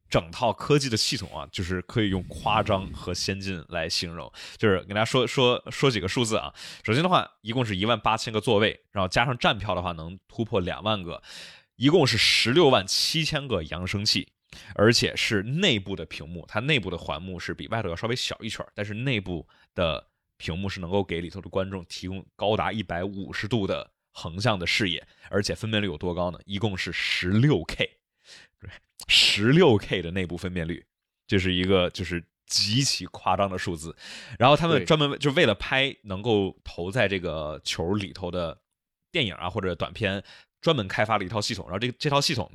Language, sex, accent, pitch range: Chinese, male, native, 90-115 Hz